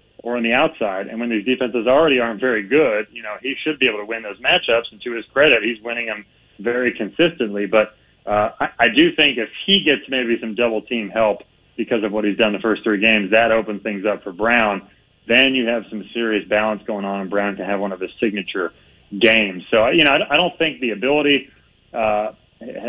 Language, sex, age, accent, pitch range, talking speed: English, male, 30-49, American, 105-125 Hz, 225 wpm